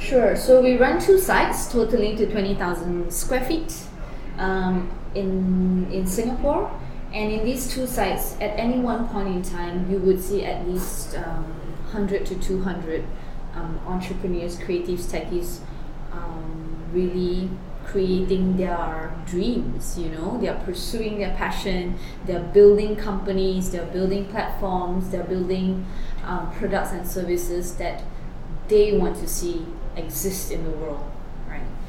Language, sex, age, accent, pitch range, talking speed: English, female, 20-39, Malaysian, 175-205 Hz, 135 wpm